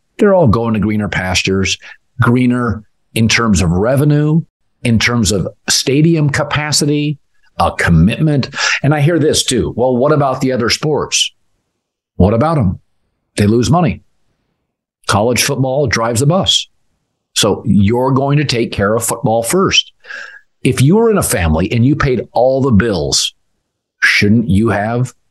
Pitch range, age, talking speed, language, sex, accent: 105-150 Hz, 50-69, 150 wpm, English, male, American